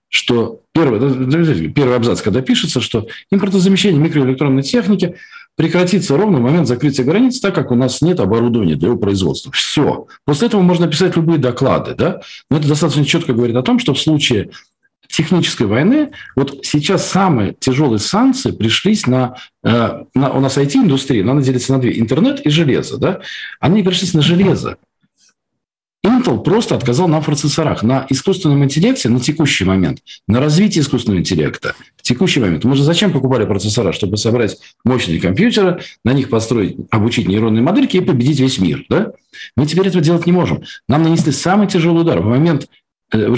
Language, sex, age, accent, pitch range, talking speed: Russian, male, 40-59, native, 125-180 Hz, 170 wpm